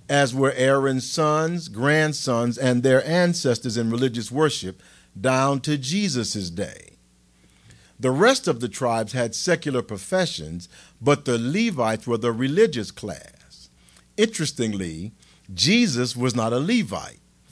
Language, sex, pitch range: English, male, 105-150 Hz